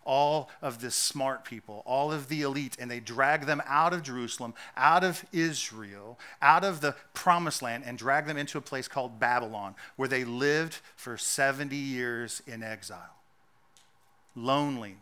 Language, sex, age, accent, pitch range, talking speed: English, male, 40-59, American, 135-200 Hz, 165 wpm